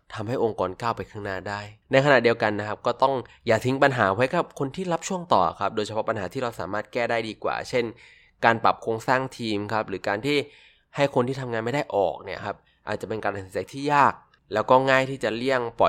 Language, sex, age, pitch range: Thai, male, 20-39, 100-130 Hz